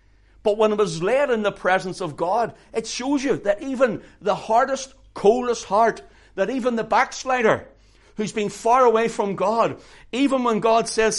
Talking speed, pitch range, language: 175 wpm, 170-235 Hz, English